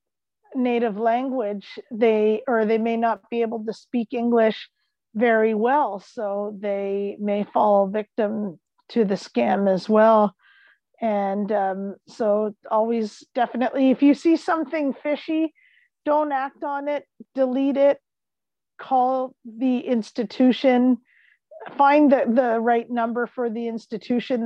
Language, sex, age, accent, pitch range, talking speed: English, female, 40-59, American, 220-270 Hz, 125 wpm